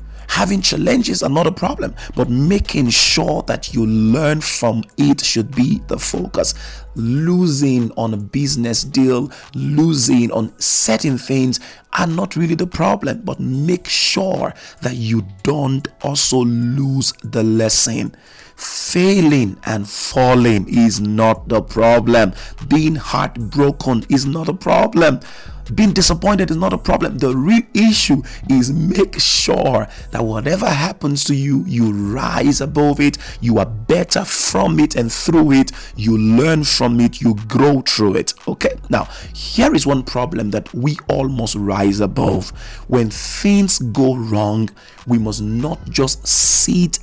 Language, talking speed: English, 145 wpm